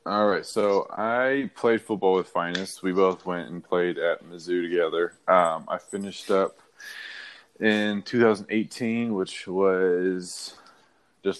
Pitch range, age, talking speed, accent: 85-95 Hz, 20-39, 140 wpm, American